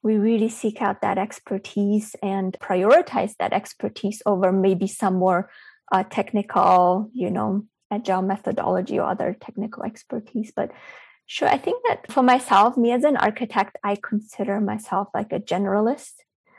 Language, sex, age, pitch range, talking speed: English, female, 20-39, 190-220 Hz, 150 wpm